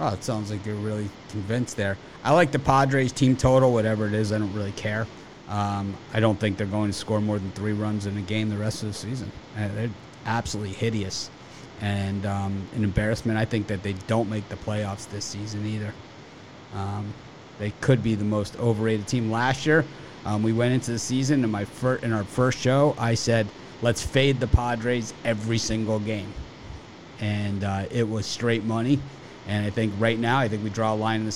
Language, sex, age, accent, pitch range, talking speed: English, male, 30-49, American, 105-120 Hz, 205 wpm